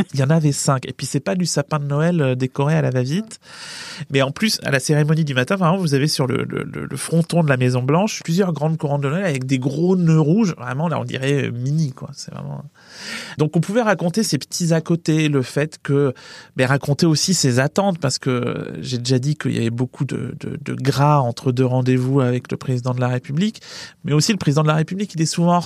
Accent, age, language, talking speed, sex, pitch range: French, 30-49, French, 245 wpm, male, 130-160 Hz